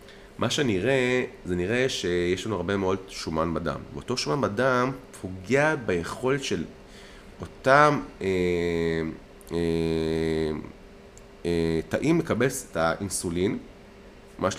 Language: Hebrew